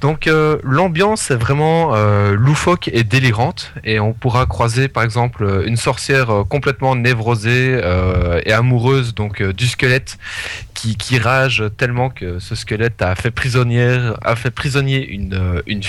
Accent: French